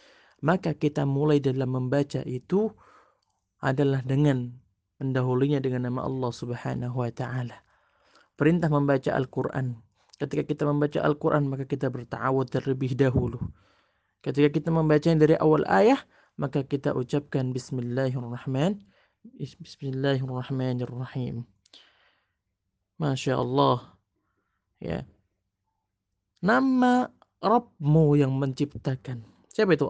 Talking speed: 100 wpm